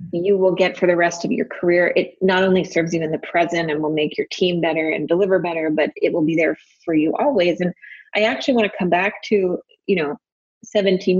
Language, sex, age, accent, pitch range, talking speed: English, female, 20-39, American, 160-205 Hz, 240 wpm